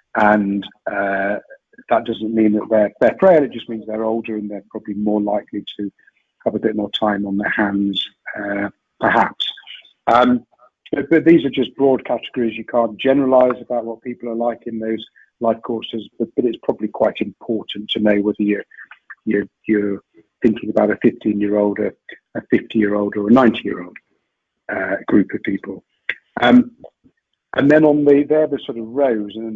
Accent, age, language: British, 50-69, English